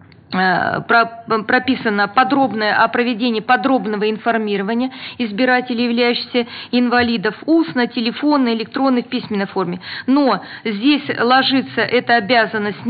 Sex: female